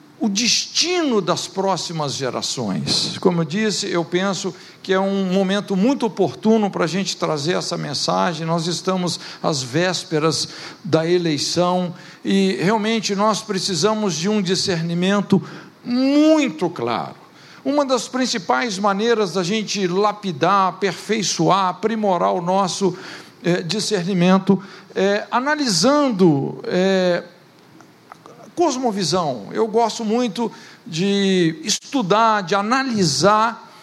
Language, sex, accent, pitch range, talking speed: Portuguese, male, Brazilian, 180-220 Hz, 110 wpm